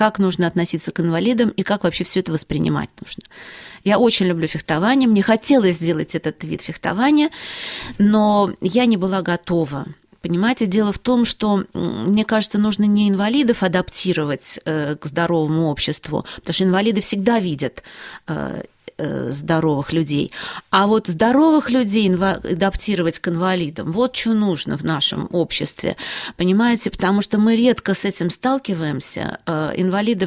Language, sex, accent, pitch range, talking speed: Russian, female, native, 165-215 Hz, 140 wpm